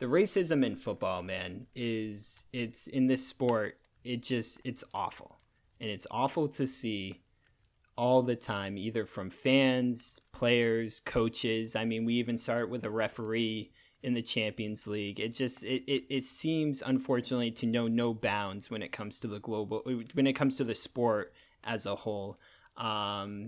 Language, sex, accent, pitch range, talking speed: English, male, American, 110-125 Hz, 170 wpm